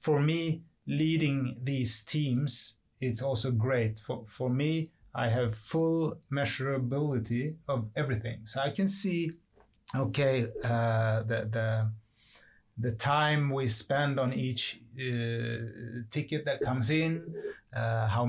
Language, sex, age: English, male, 30-49